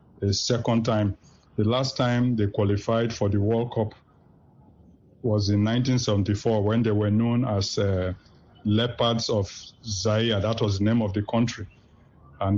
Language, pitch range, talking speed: English, 105-115 Hz, 150 wpm